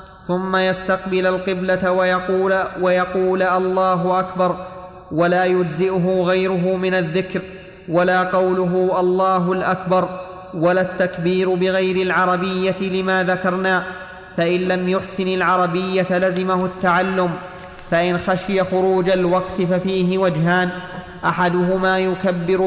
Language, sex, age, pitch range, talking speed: Arabic, male, 30-49, 180-185 Hz, 95 wpm